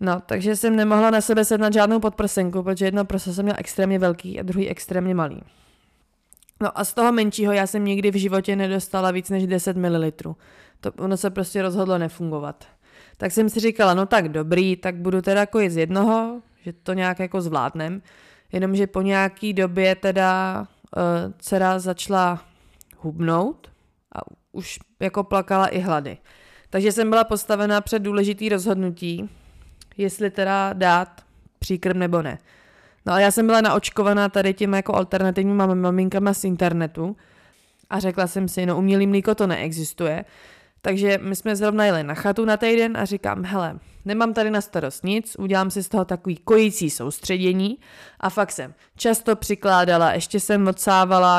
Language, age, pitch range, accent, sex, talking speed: Czech, 20-39, 180-205 Hz, native, female, 165 wpm